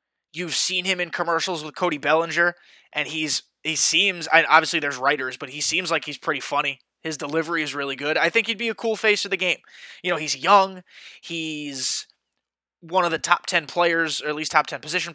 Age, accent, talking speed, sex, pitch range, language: 20-39, American, 220 wpm, male, 150-180 Hz, English